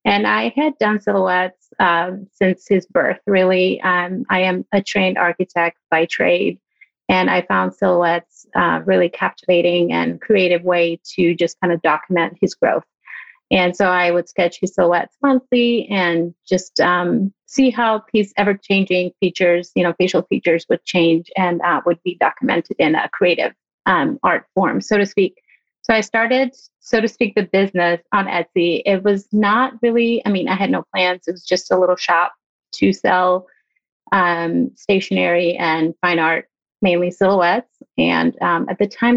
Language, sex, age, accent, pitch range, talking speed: English, female, 30-49, American, 175-205 Hz, 170 wpm